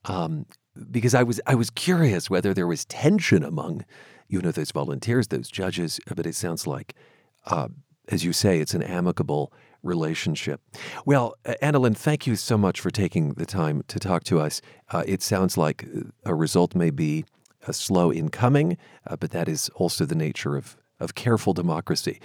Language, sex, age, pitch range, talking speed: English, male, 40-59, 85-120 Hz, 180 wpm